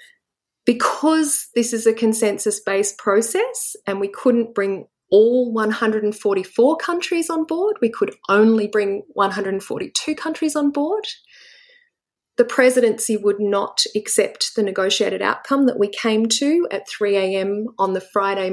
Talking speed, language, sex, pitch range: 135 wpm, English, female, 200-300 Hz